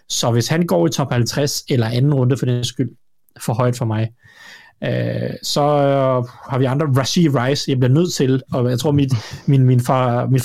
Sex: male